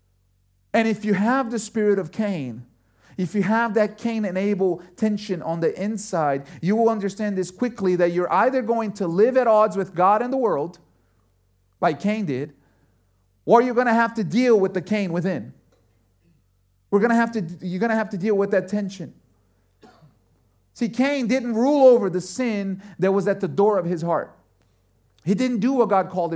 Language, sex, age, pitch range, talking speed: English, male, 40-59, 160-240 Hz, 195 wpm